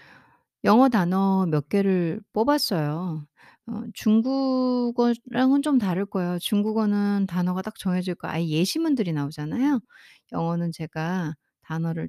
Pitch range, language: 170-235 Hz, Korean